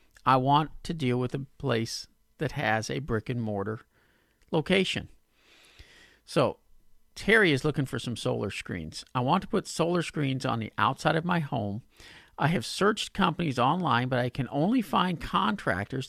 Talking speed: 160 wpm